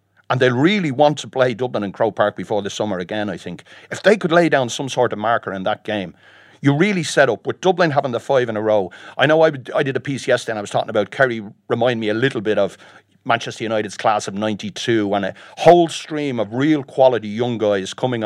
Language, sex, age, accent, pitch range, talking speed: English, male, 40-59, Irish, 105-145 Hz, 245 wpm